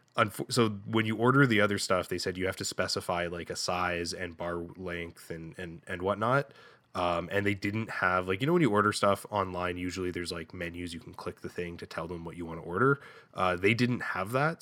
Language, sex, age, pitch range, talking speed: English, male, 10-29, 85-105 Hz, 240 wpm